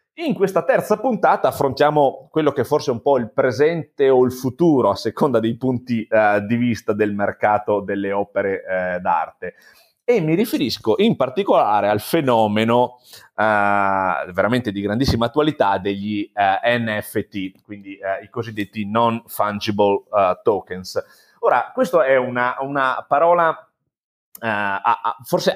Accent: native